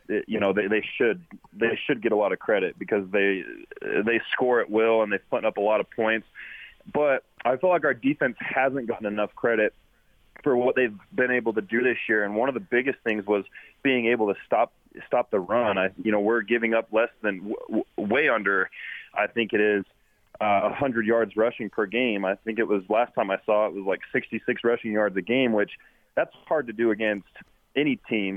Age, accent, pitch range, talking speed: 20-39, American, 105-125 Hz, 225 wpm